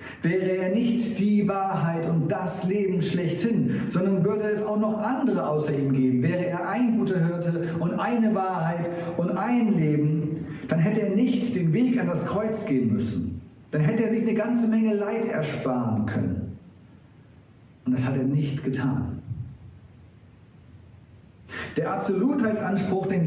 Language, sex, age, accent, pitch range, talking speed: German, male, 40-59, German, 130-205 Hz, 150 wpm